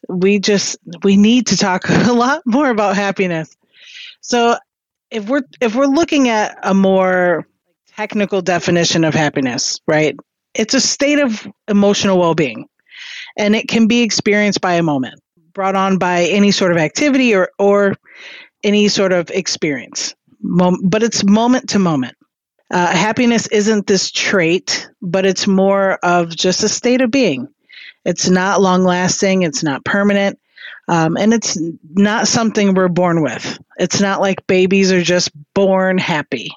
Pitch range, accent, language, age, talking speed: 170-215 Hz, American, English, 40-59, 160 wpm